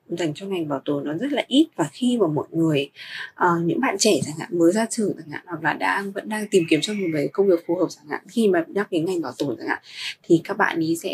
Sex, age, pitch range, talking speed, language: female, 20-39, 170-240 Hz, 295 wpm, Vietnamese